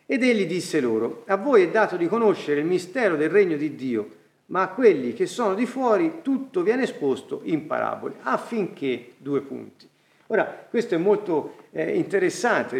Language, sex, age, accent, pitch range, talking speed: Italian, male, 50-69, native, 145-245 Hz, 170 wpm